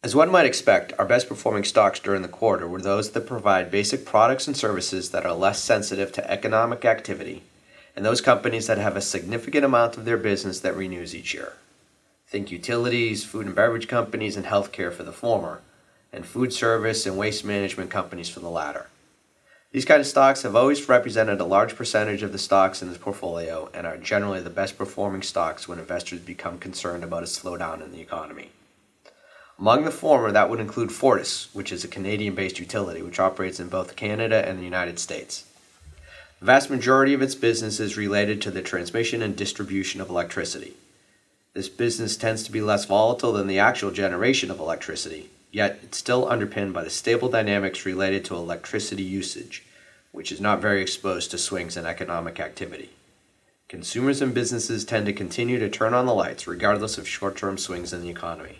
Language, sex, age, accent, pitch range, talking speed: English, male, 30-49, American, 95-115 Hz, 190 wpm